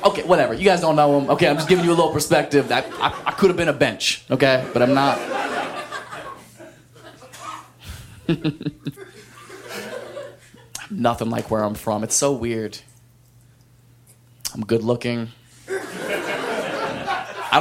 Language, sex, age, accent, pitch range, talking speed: English, male, 20-39, American, 130-210 Hz, 130 wpm